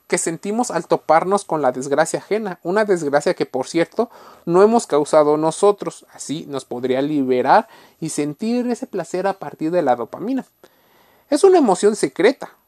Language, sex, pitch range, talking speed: Spanish, male, 140-200 Hz, 160 wpm